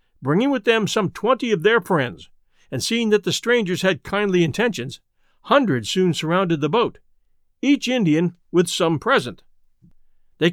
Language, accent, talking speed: English, American, 155 wpm